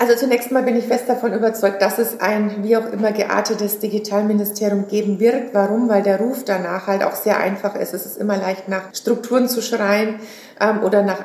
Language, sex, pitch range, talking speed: German, female, 195-225 Hz, 210 wpm